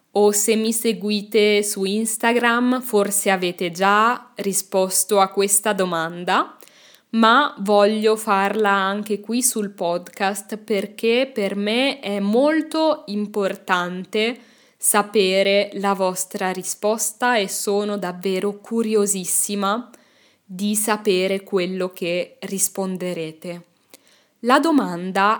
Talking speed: 95 wpm